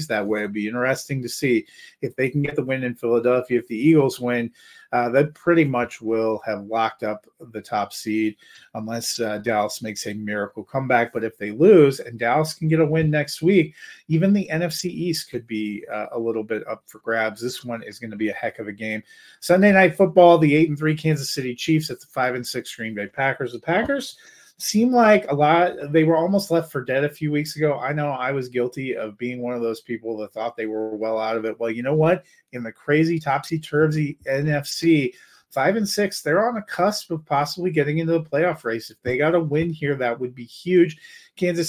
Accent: American